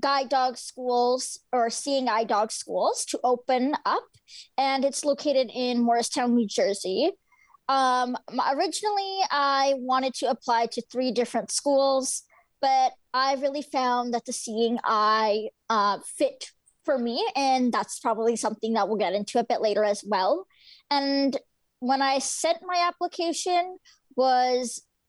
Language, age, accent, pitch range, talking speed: English, 20-39, American, 235-285 Hz, 145 wpm